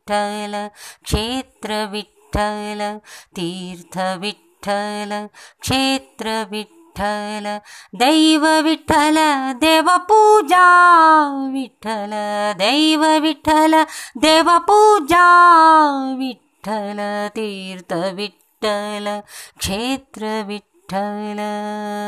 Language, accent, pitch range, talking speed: English, Indian, 205-270 Hz, 50 wpm